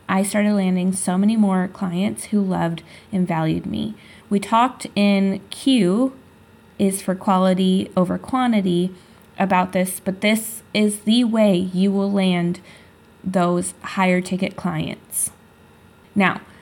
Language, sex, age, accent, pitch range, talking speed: English, female, 20-39, American, 185-220 Hz, 130 wpm